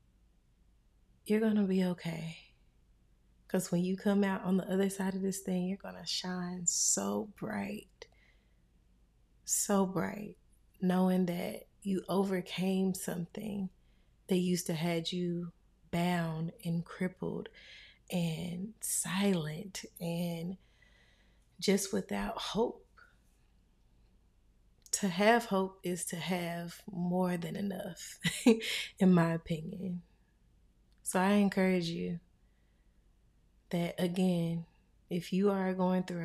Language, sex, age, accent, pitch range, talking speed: English, female, 20-39, American, 170-195 Hz, 110 wpm